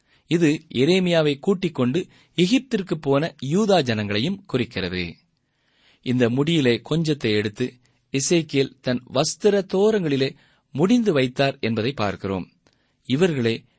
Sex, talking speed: male, 85 wpm